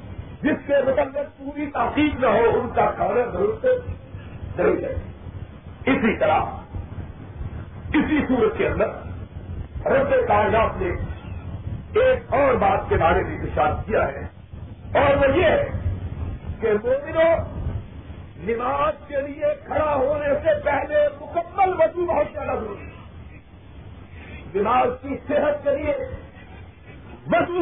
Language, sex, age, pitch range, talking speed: Urdu, male, 50-69, 240-330 Hz, 120 wpm